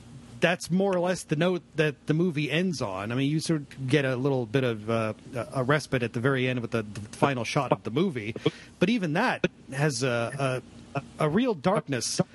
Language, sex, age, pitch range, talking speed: English, male, 40-59, 130-175 Hz, 215 wpm